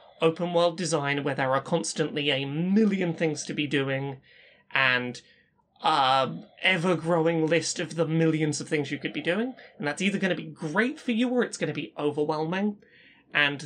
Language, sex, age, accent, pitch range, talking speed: English, male, 20-39, British, 140-190 Hz, 190 wpm